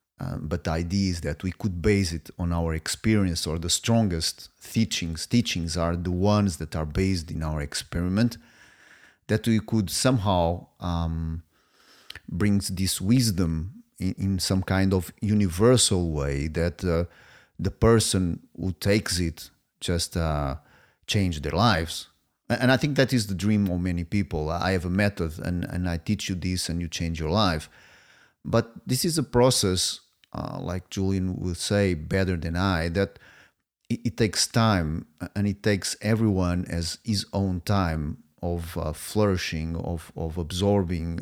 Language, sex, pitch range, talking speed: Portuguese, male, 85-105 Hz, 160 wpm